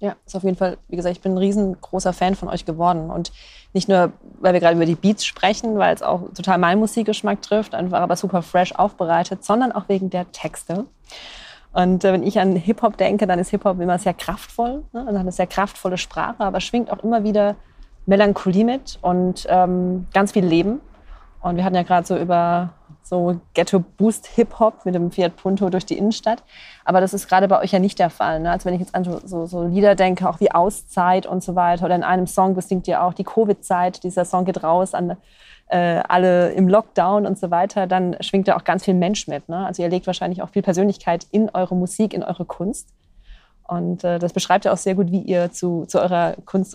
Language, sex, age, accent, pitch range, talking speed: German, female, 20-39, German, 175-200 Hz, 220 wpm